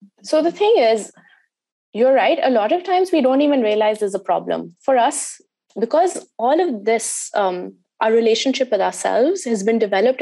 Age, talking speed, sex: 20-39, 180 wpm, female